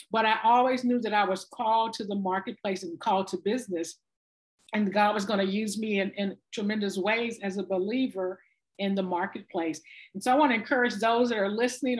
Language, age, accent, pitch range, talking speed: English, 50-69, American, 205-265 Hz, 210 wpm